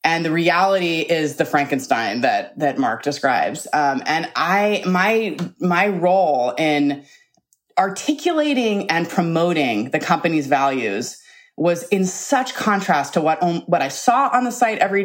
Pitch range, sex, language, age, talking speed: 155-210 Hz, female, English, 20-39, 145 wpm